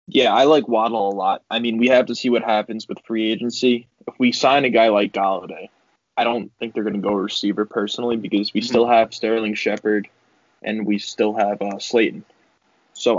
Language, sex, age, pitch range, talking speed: English, male, 20-39, 110-120 Hz, 210 wpm